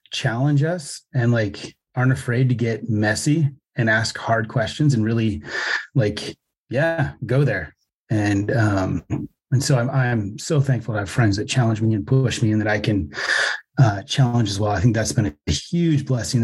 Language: English